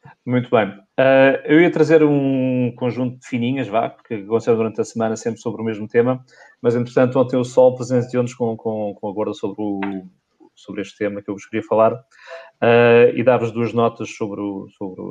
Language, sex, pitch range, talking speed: Portuguese, male, 105-130 Hz, 195 wpm